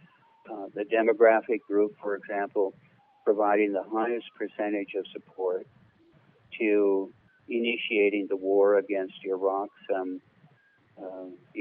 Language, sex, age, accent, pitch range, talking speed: English, male, 60-79, American, 100-130 Hz, 105 wpm